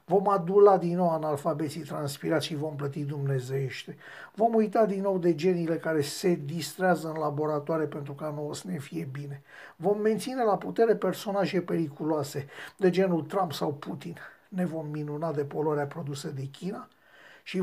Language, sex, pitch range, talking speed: Romanian, male, 155-205 Hz, 165 wpm